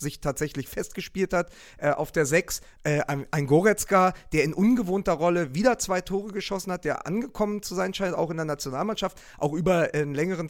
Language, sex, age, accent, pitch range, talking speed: German, male, 40-59, German, 145-190 Hz, 195 wpm